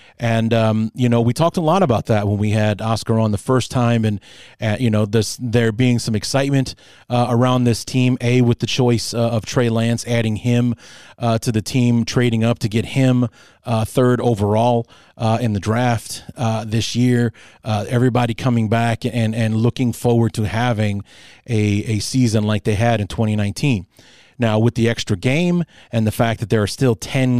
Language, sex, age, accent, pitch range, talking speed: English, male, 30-49, American, 110-125 Hz, 200 wpm